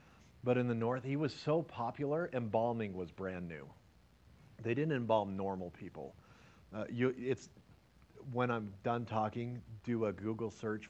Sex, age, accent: male, 40-59, American